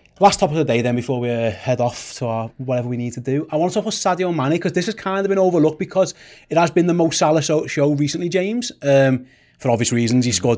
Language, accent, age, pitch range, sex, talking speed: English, British, 30-49, 125-165 Hz, male, 265 wpm